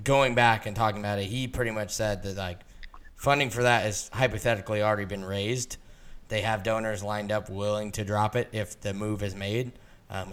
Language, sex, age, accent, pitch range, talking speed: English, male, 10-29, American, 105-125 Hz, 205 wpm